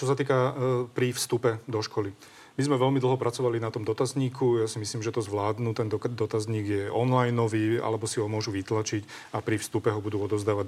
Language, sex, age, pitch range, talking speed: Slovak, male, 40-59, 105-115 Hz, 210 wpm